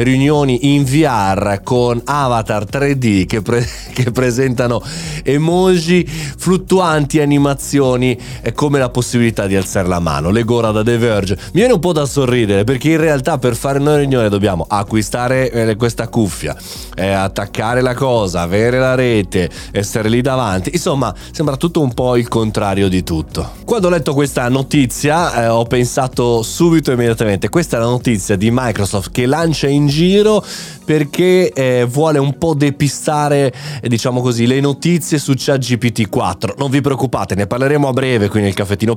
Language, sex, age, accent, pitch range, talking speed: Italian, male, 20-39, native, 105-140 Hz, 160 wpm